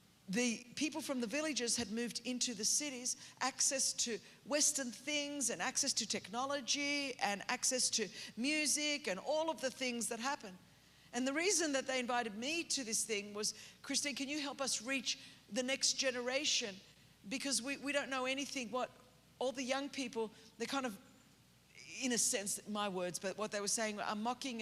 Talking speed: 185 wpm